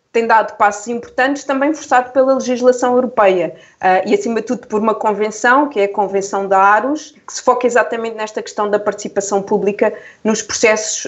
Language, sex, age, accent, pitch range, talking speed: Portuguese, female, 20-39, Brazilian, 210-265 Hz, 180 wpm